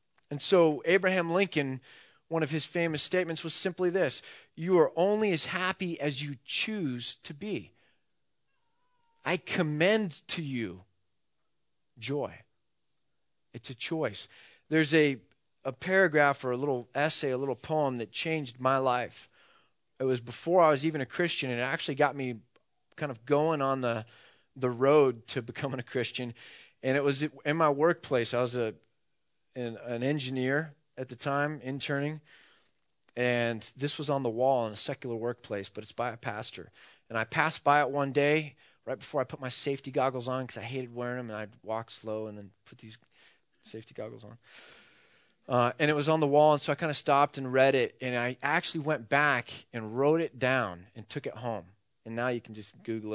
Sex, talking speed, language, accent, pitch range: male, 185 wpm, English, American, 120-155 Hz